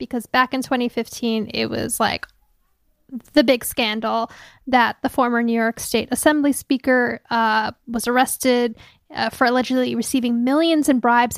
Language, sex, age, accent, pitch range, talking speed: English, female, 10-29, American, 235-275 Hz, 150 wpm